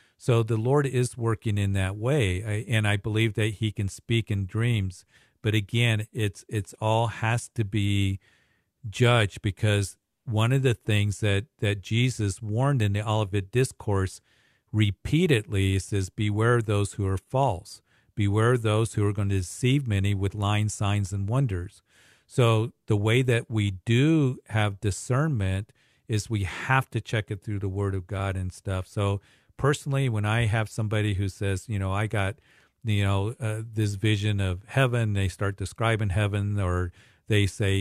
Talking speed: 170 wpm